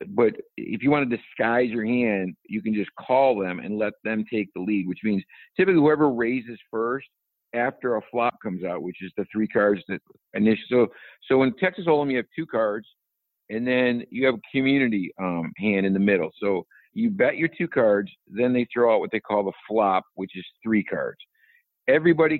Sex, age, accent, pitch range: male, 50-69, American, 105-145 Hz